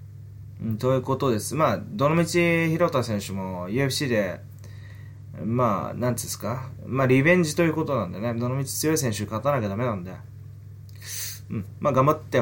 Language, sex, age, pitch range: Japanese, male, 20-39, 105-140 Hz